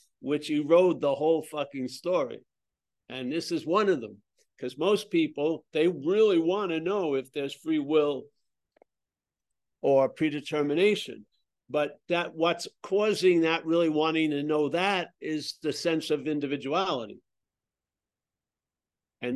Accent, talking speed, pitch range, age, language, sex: American, 130 wpm, 145-185 Hz, 60-79, English, male